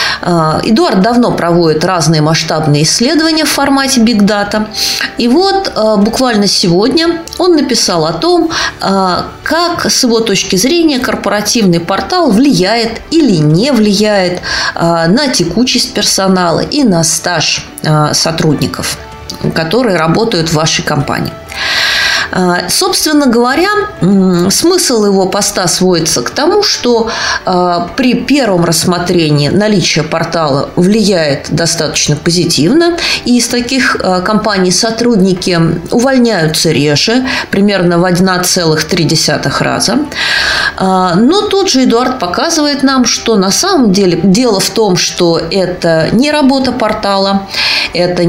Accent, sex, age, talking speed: native, female, 20-39, 110 wpm